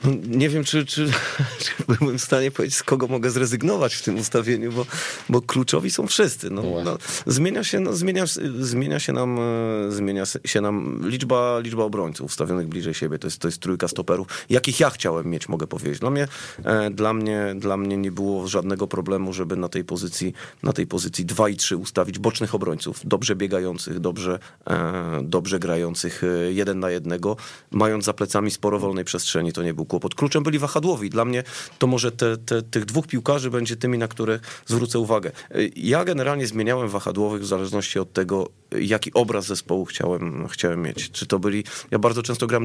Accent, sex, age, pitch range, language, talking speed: native, male, 30-49, 95-120 Hz, Polish, 165 wpm